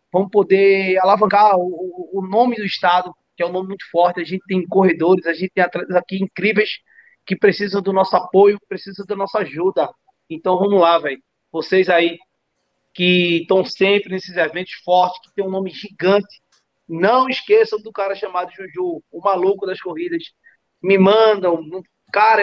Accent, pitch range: Brazilian, 180-245 Hz